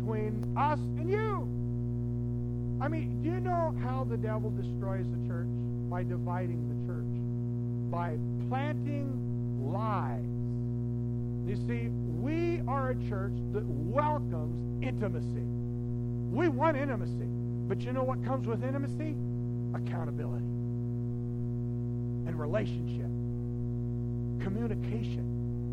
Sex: male